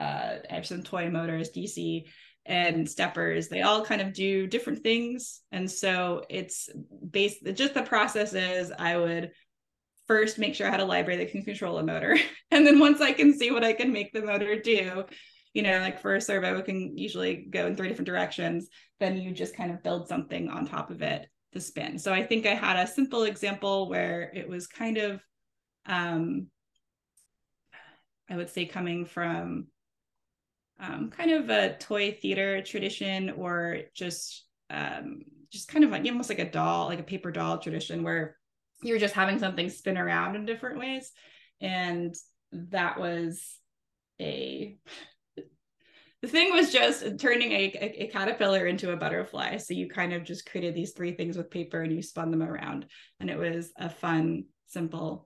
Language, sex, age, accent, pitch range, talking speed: English, female, 20-39, American, 170-215 Hz, 180 wpm